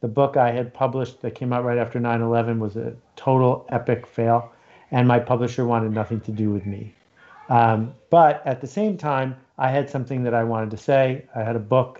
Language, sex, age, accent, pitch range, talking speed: English, male, 50-69, American, 120-145 Hz, 215 wpm